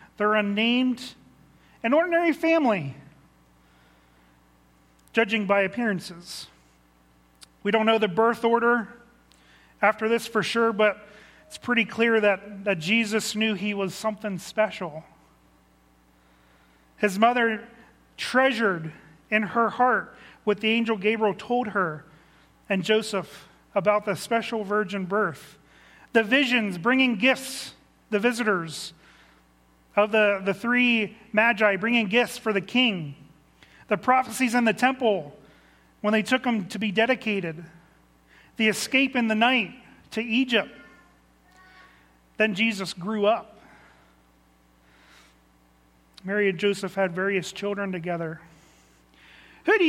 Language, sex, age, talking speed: English, male, 40-59, 115 wpm